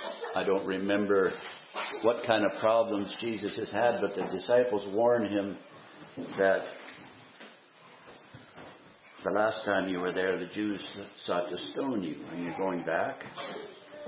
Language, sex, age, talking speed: English, male, 60-79, 135 wpm